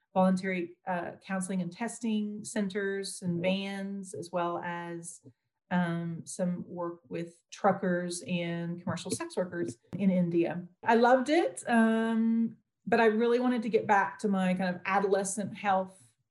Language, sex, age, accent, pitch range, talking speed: English, female, 40-59, American, 180-205 Hz, 145 wpm